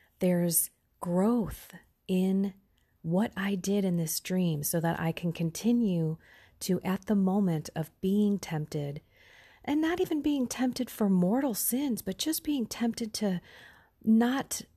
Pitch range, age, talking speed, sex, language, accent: 160-210 Hz, 30-49, 140 wpm, female, English, American